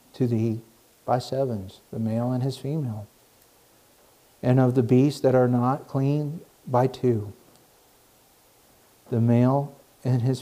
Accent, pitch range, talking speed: American, 115-135 Hz, 130 wpm